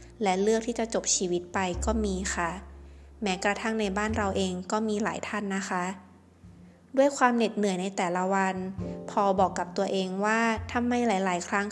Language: Thai